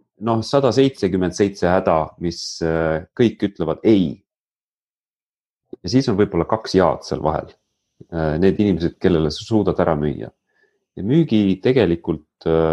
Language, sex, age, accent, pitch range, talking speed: English, male, 30-49, Finnish, 85-110 Hz, 120 wpm